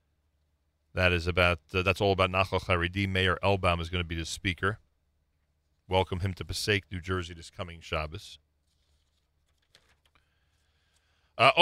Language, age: English, 40-59